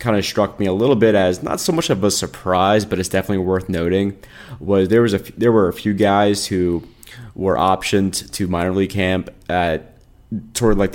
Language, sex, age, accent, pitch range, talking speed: English, male, 20-39, American, 90-105 Hz, 215 wpm